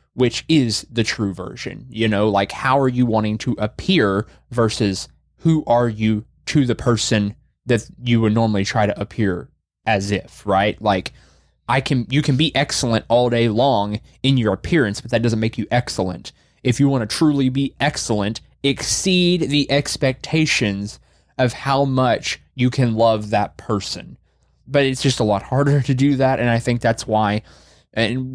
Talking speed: 175 wpm